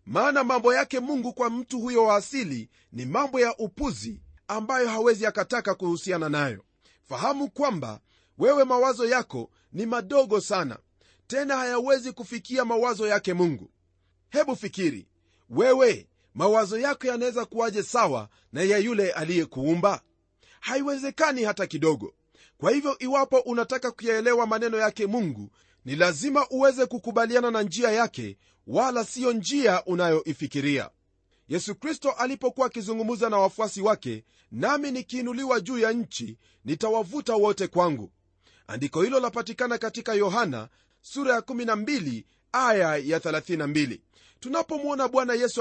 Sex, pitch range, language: male, 155-250 Hz, Swahili